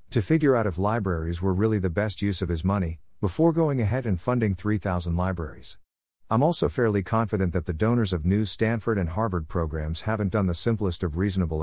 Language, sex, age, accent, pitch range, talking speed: English, male, 50-69, American, 90-115 Hz, 200 wpm